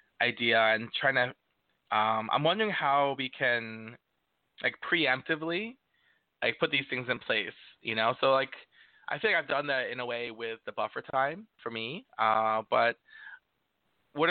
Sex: male